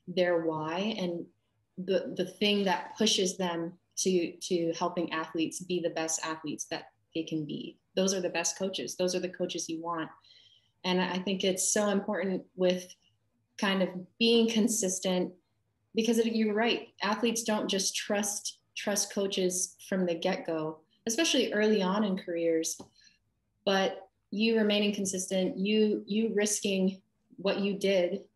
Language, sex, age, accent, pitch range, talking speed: English, female, 20-39, American, 170-195 Hz, 150 wpm